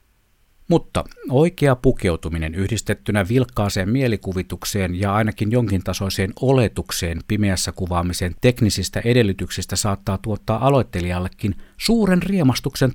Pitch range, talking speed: 95-125 Hz, 95 wpm